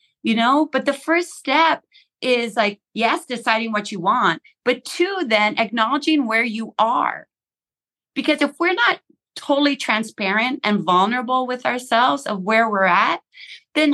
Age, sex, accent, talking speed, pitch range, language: 30-49, female, American, 150 wpm, 175-250 Hz, English